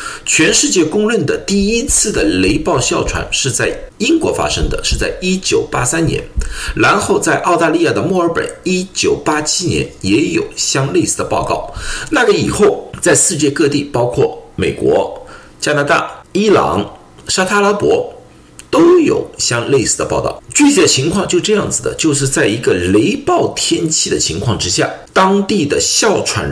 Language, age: Chinese, 50-69